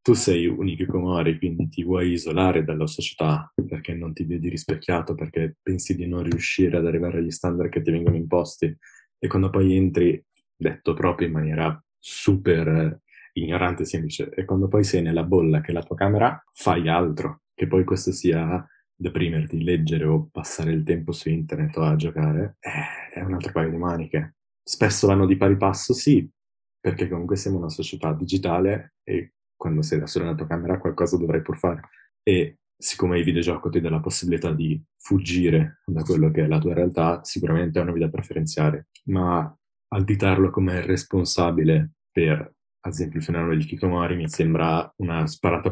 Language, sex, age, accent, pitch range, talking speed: Italian, male, 20-39, native, 80-95 Hz, 180 wpm